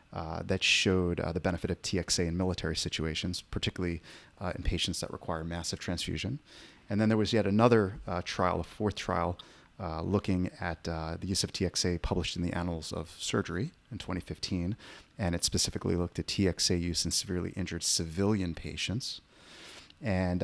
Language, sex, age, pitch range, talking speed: English, male, 30-49, 90-105 Hz, 175 wpm